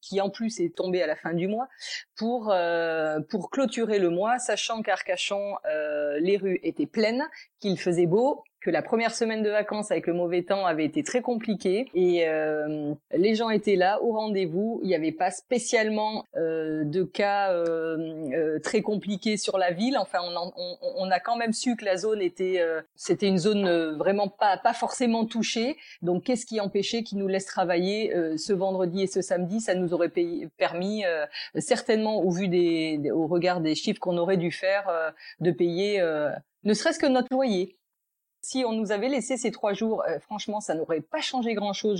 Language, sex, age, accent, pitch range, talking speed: French, female, 30-49, French, 175-230 Hz, 200 wpm